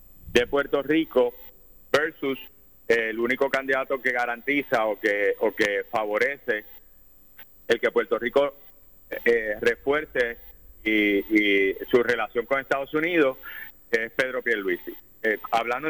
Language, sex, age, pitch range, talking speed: Spanish, male, 30-49, 120-160 Hz, 120 wpm